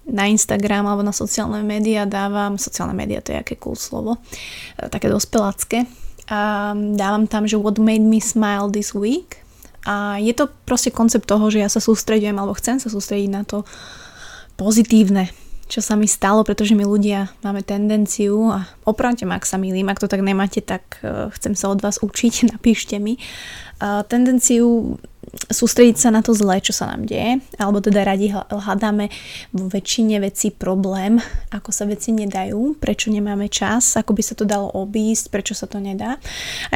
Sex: female